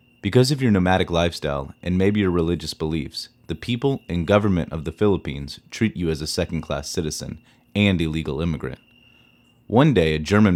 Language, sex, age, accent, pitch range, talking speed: English, male, 30-49, American, 85-115 Hz, 170 wpm